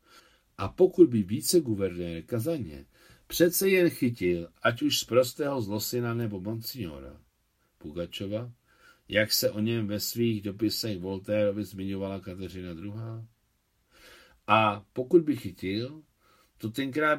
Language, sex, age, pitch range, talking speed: Czech, male, 60-79, 95-125 Hz, 120 wpm